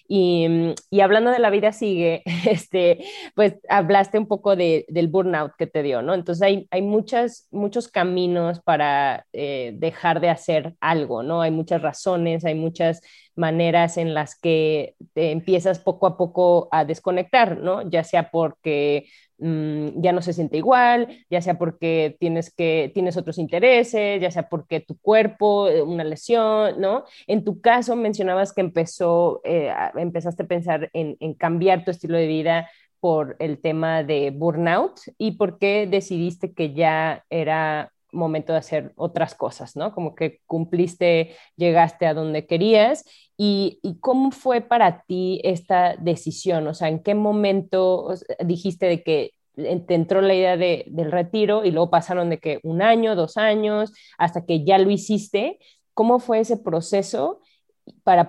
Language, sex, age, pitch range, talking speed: Spanish, female, 20-39, 165-200 Hz, 160 wpm